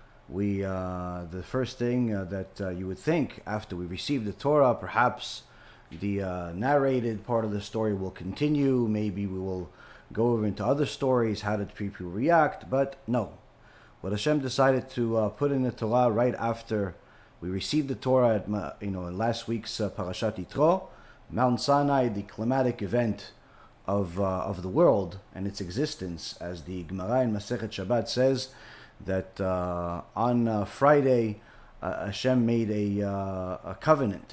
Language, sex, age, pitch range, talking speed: English, male, 40-59, 100-125 Hz, 165 wpm